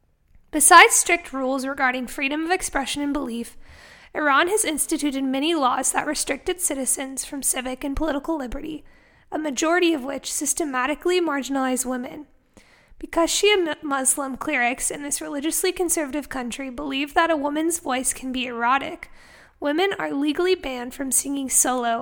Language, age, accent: English, 10-29, American